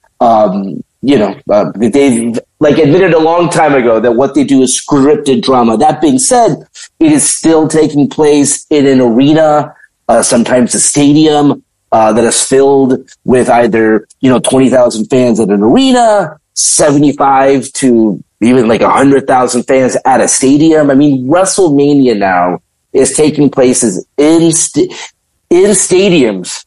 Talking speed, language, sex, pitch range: 150 wpm, English, male, 130-185 Hz